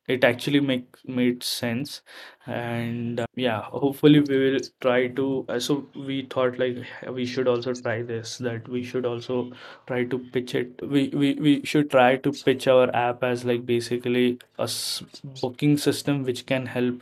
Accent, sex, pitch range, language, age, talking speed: Indian, male, 120-125 Hz, English, 20-39, 175 wpm